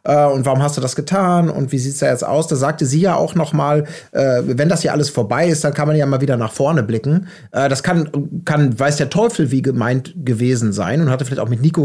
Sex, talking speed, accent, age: male, 265 wpm, German, 30-49